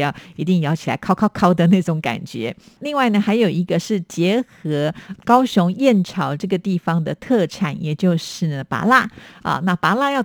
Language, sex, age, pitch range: Chinese, female, 50-69, 160-200 Hz